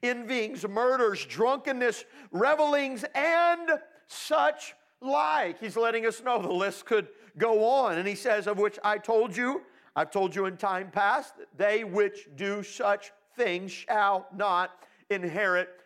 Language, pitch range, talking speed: English, 205-295 Hz, 145 wpm